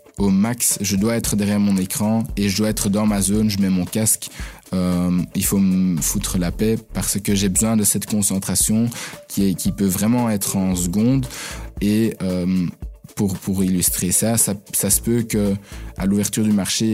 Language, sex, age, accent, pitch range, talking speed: French, male, 20-39, French, 100-115 Hz, 200 wpm